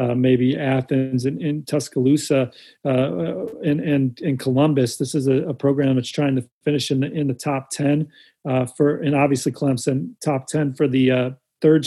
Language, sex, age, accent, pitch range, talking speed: English, male, 40-59, American, 140-155 Hz, 175 wpm